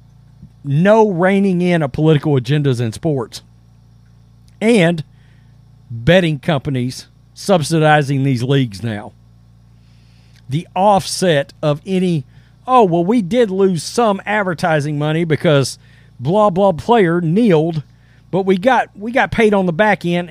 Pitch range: 130-210 Hz